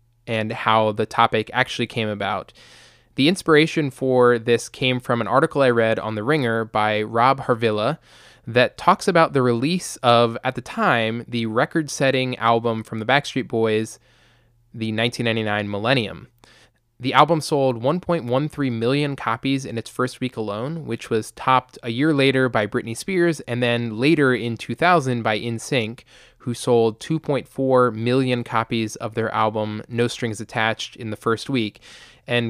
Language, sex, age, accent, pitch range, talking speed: English, male, 20-39, American, 110-130 Hz, 155 wpm